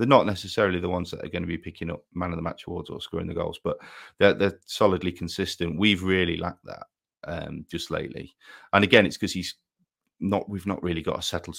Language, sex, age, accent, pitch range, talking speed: English, male, 30-49, British, 85-100 Hz, 215 wpm